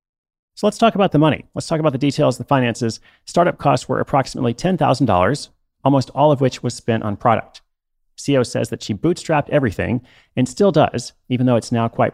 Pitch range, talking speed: 110-140 Hz, 200 wpm